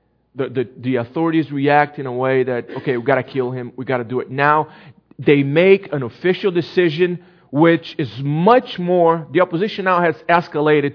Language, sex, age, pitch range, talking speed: English, male, 40-59, 135-185 Hz, 185 wpm